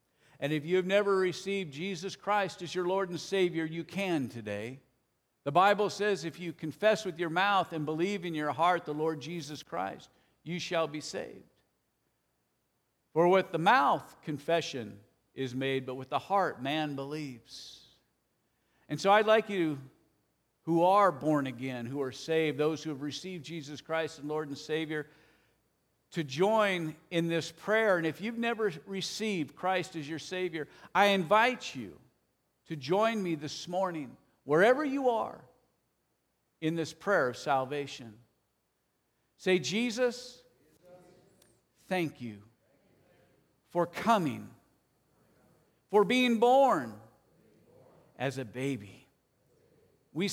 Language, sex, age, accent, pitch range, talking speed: English, male, 50-69, American, 145-195 Hz, 140 wpm